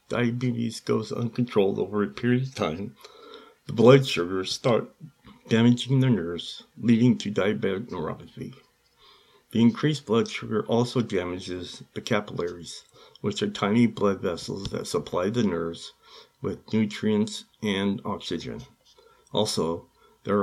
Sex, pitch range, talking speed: male, 95-120 Hz, 125 wpm